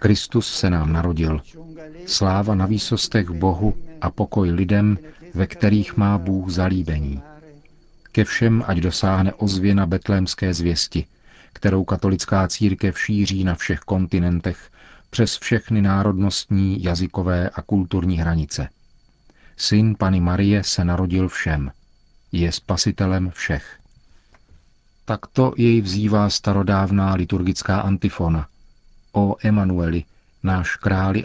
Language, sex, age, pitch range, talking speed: Czech, male, 40-59, 90-105 Hz, 110 wpm